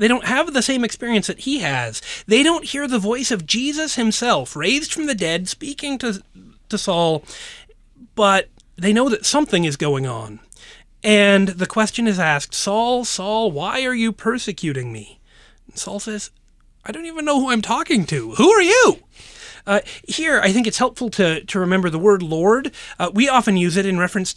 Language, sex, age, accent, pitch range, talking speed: English, male, 30-49, American, 175-240 Hz, 190 wpm